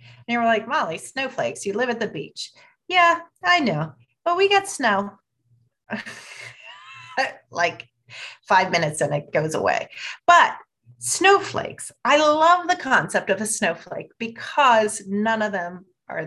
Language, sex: English, female